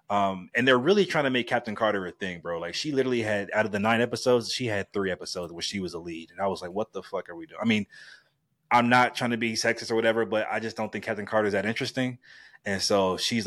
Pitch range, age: 100-120 Hz, 20-39